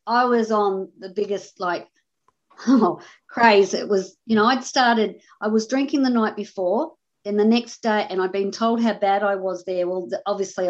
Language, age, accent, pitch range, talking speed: English, 50-69, Australian, 180-235 Hz, 195 wpm